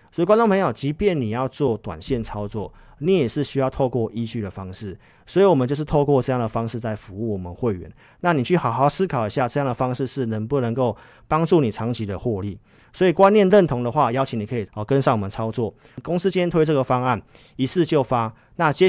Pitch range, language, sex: 115-145 Hz, Chinese, male